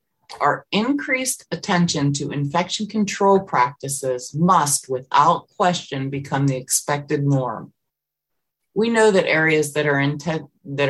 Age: 30-49